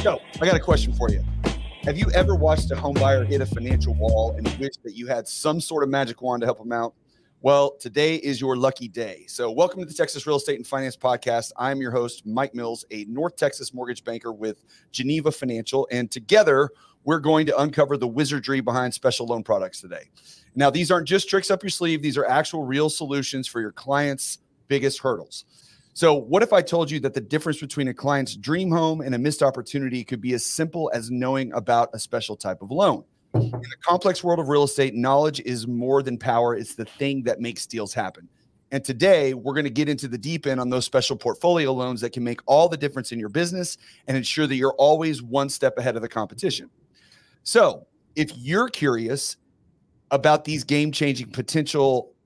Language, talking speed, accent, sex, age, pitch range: English, 210 wpm, American, male, 30-49, 120-150 Hz